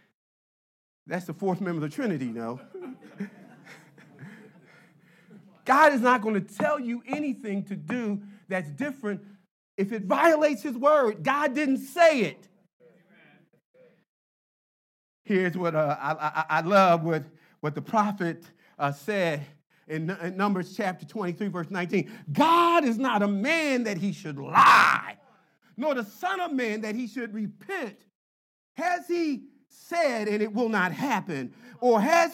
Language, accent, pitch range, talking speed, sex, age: English, American, 165-240 Hz, 145 wpm, male, 40-59